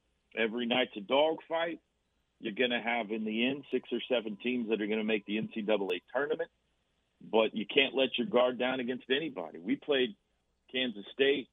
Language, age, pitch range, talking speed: English, 50-69, 110-150 Hz, 185 wpm